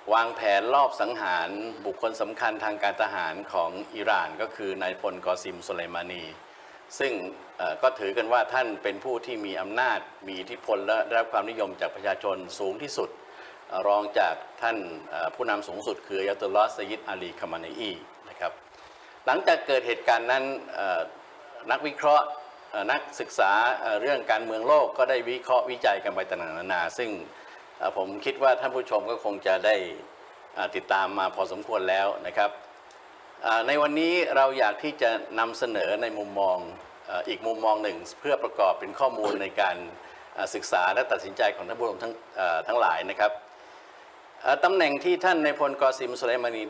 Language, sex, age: Thai, male, 60-79